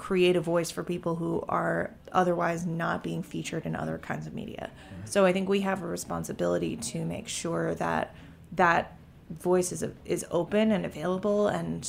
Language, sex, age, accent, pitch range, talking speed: English, female, 20-39, American, 160-185 Hz, 175 wpm